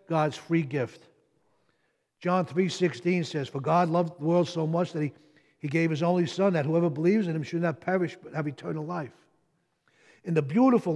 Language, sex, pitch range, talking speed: English, male, 150-200 Hz, 190 wpm